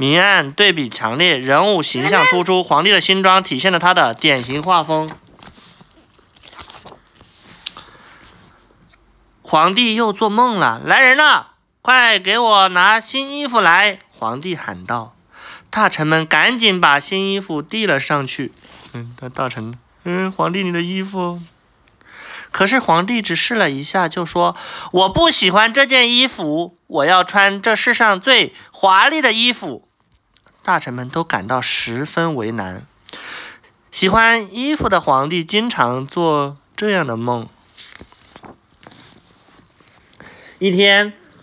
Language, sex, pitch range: Chinese, male, 145-210 Hz